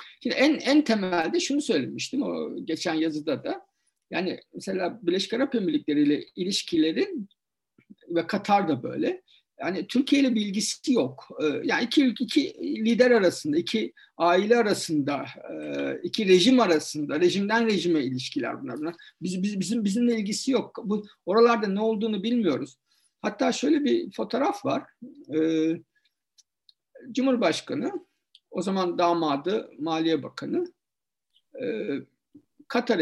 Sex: male